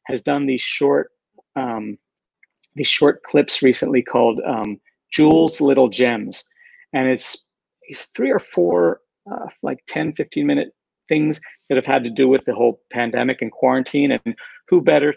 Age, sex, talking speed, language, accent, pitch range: 50-69, male, 160 wpm, English, American, 125-180 Hz